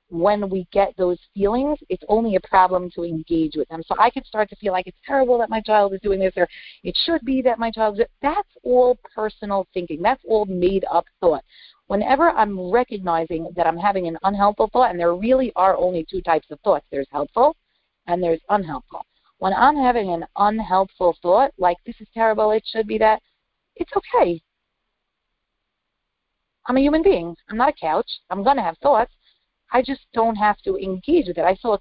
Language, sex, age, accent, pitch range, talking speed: English, female, 40-59, American, 180-235 Hz, 205 wpm